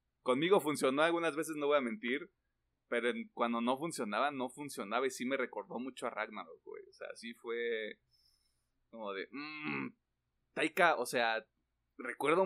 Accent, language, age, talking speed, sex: Mexican, Spanish, 30-49, 160 wpm, male